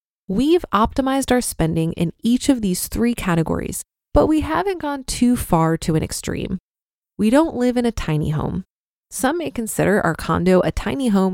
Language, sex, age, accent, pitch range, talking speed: English, female, 20-39, American, 175-255 Hz, 180 wpm